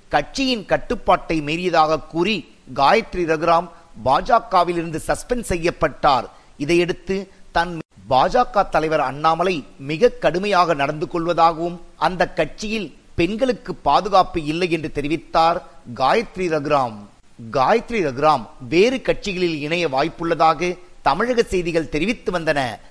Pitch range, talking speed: 155-185 Hz, 95 wpm